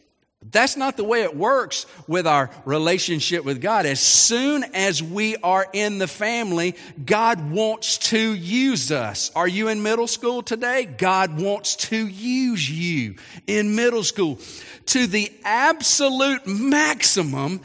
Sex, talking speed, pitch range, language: male, 145 wpm, 145-240 Hz, English